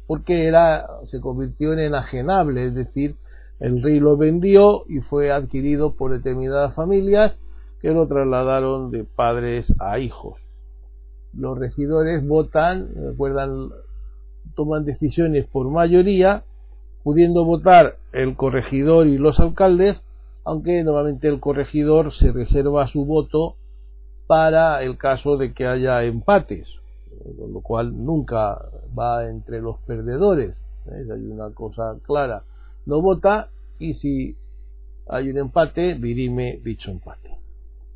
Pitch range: 120-165 Hz